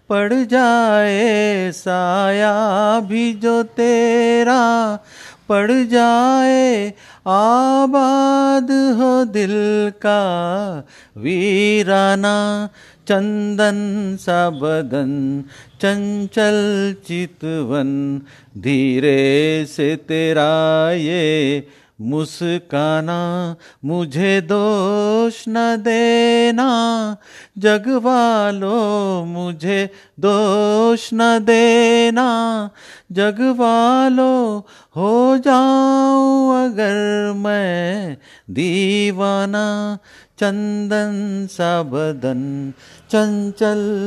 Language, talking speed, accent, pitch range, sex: Hindi, 60 wpm, native, 175-230 Hz, male